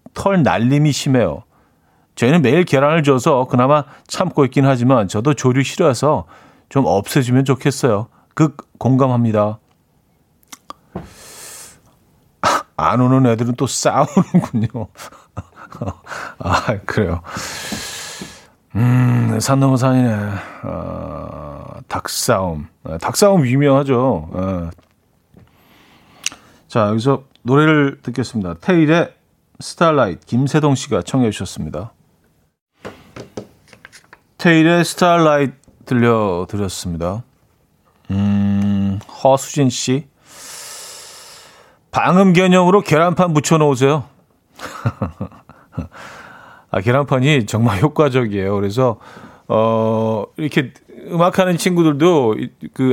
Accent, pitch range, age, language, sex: native, 110-150 Hz, 40-59, Korean, male